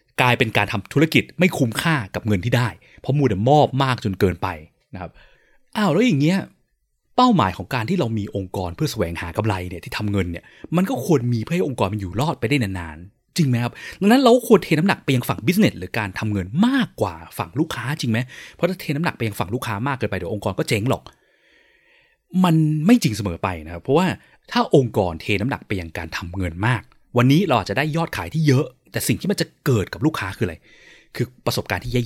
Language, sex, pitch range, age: Thai, male, 100-155 Hz, 20-39